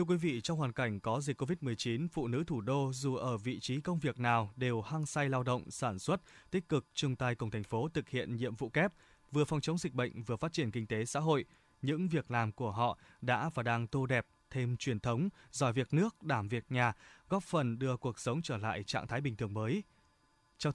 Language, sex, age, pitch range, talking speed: Vietnamese, male, 20-39, 120-155 Hz, 240 wpm